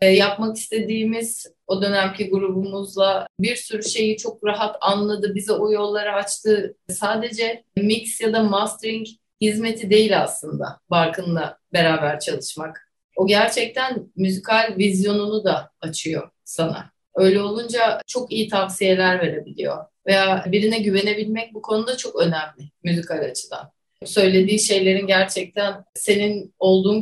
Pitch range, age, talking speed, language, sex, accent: 190-225 Hz, 30-49, 120 wpm, Turkish, female, native